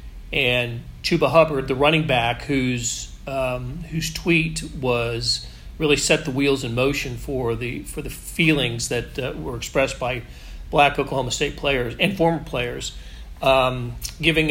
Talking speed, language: 150 wpm, English